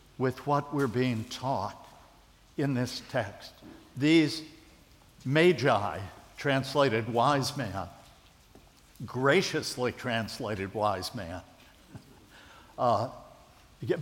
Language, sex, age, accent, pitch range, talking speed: English, male, 60-79, American, 120-150 Hz, 75 wpm